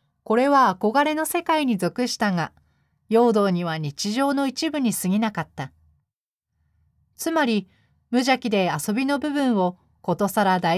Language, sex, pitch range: Japanese, female, 180-255 Hz